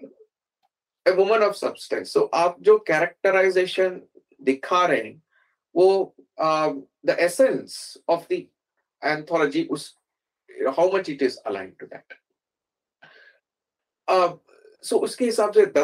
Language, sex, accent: Hindi, male, native